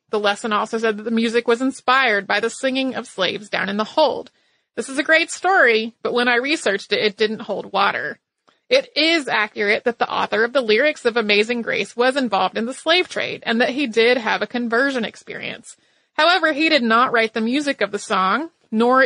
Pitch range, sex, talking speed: 215-270 Hz, female, 215 wpm